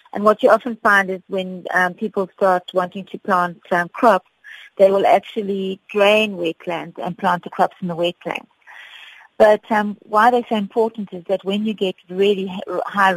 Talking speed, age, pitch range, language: 180 wpm, 30-49, 180-210 Hz, English